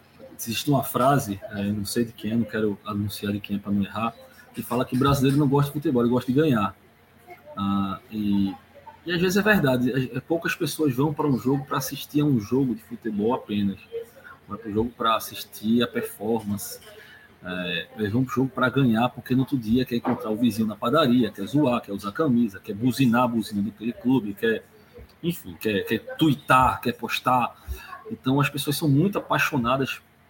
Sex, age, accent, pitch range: male, 20-39, Brazilian, 105-145 Hz